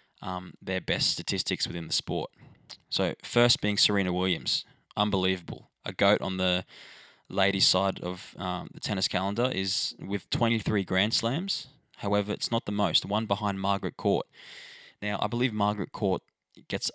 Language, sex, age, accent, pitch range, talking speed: English, male, 20-39, Australian, 95-110 Hz, 155 wpm